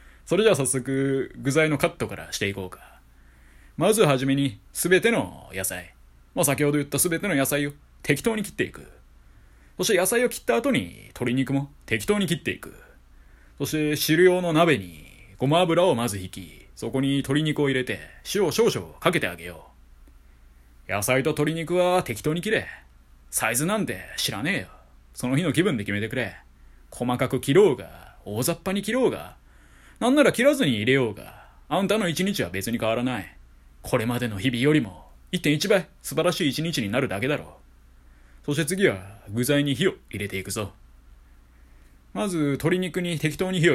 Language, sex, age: Japanese, male, 20-39